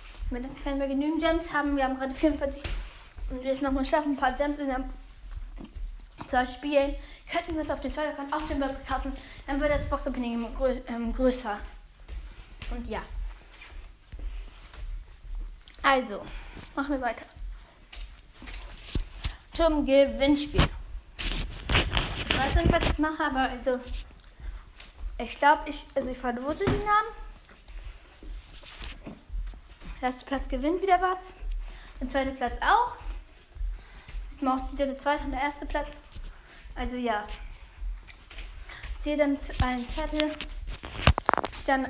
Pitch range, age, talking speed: 250-295 Hz, 10-29, 125 wpm